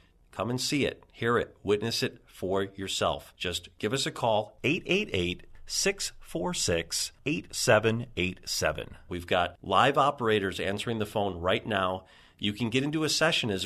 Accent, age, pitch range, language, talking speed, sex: American, 40-59, 90-125 Hz, English, 140 wpm, male